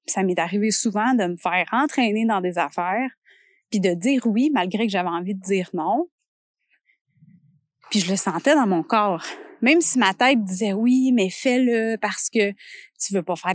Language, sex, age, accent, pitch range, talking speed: French, female, 30-49, Canadian, 190-275 Hz, 195 wpm